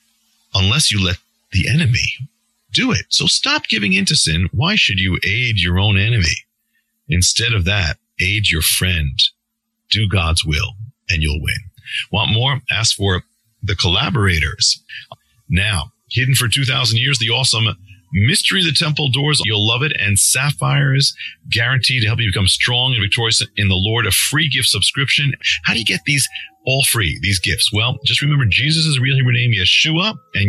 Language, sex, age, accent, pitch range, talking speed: English, male, 40-59, American, 100-130 Hz, 175 wpm